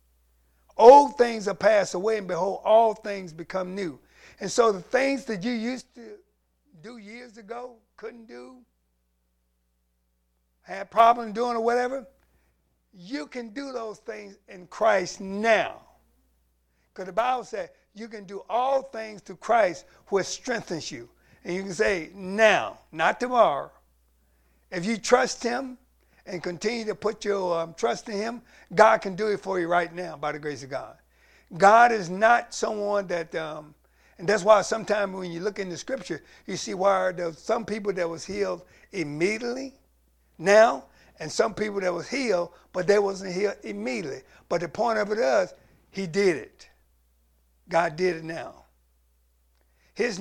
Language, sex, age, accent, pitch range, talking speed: English, male, 50-69, American, 150-220 Hz, 165 wpm